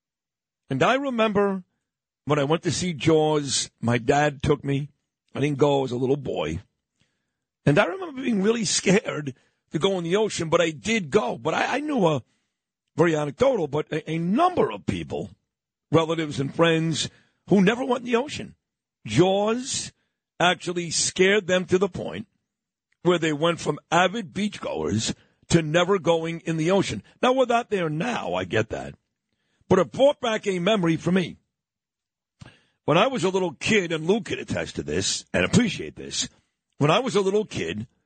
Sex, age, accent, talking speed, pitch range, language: male, 50-69, American, 180 wpm, 155-195 Hz, English